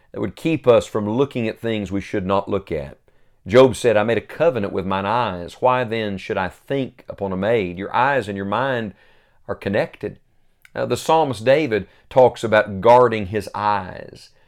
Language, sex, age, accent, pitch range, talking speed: English, male, 40-59, American, 105-145 Hz, 190 wpm